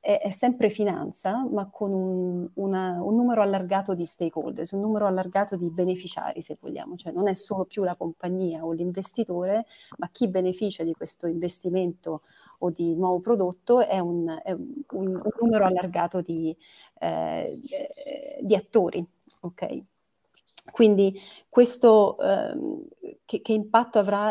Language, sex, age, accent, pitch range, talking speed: Italian, female, 40-59, native, 175-215 Hz, 130 wpm